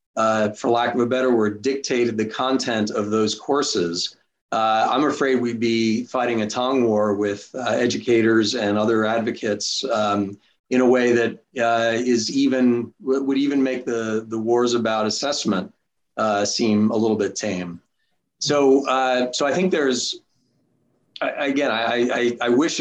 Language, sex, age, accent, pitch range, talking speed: English, male, 40-59, American, 110-125 Hz, 165 wpm